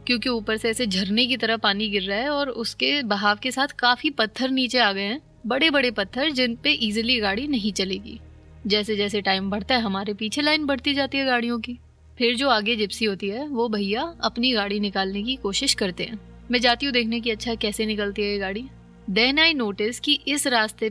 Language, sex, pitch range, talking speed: Hindi, female, 205-250 Hz, 220 wpm